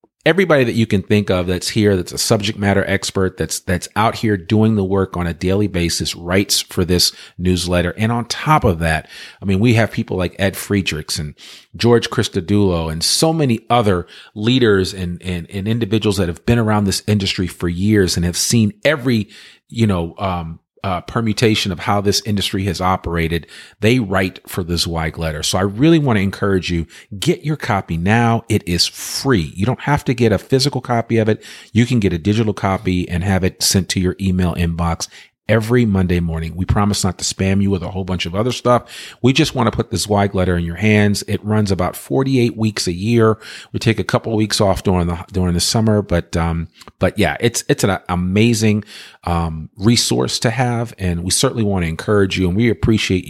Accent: American